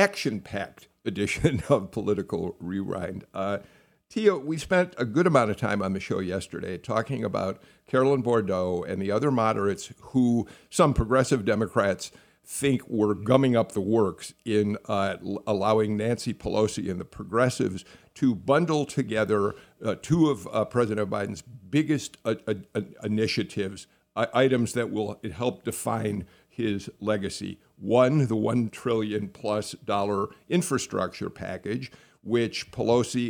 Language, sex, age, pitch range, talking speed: English, male, 50-69, 105-130 Hz, 135 wpm